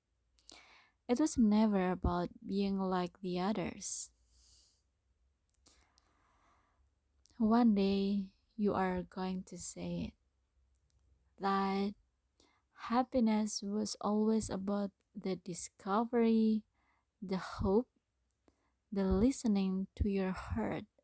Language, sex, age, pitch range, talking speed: English, female, 20-39, 175-220 Hz, 85 wpm